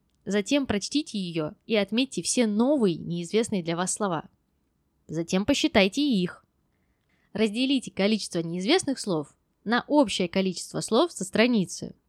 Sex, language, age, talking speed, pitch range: female, Russian, 20-39, 120 wpm, 170-245 Hz